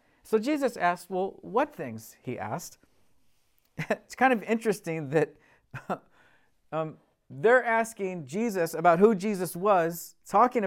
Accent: American